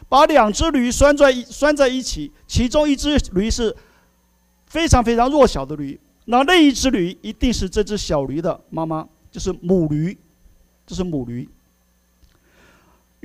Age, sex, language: 50-69, male, Chinese